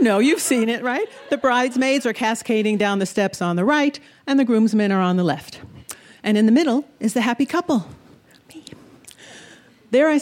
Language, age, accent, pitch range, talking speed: English, 50-69, American, 195-260 Hz, 190 wpm